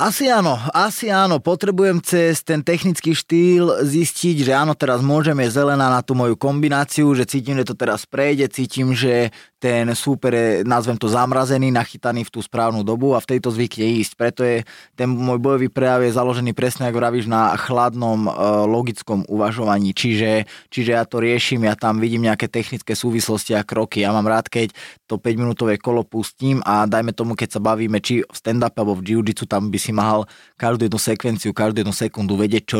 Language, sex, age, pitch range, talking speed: Slovak, male, 20-39, 105-125 Hz, 190 wpm